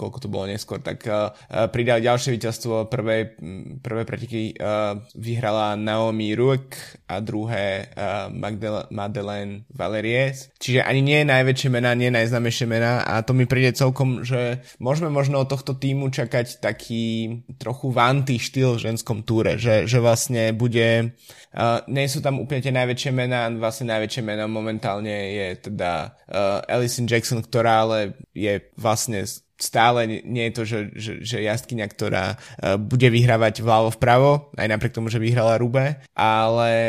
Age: 20-39